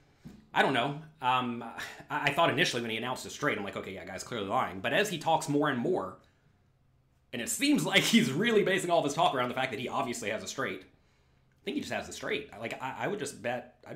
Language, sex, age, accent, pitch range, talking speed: English, male, 30-49, American, 105-150 Hz, 250 wpm